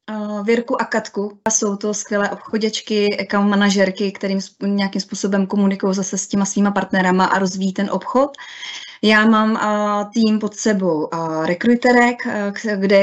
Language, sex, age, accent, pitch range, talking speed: Czech, female, 20-39, native, 185-215 Hz, 150 wpm